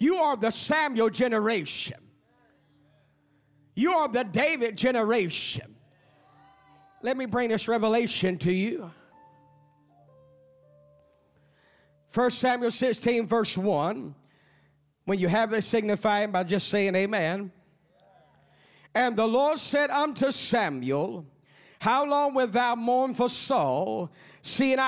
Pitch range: 185-255 Hz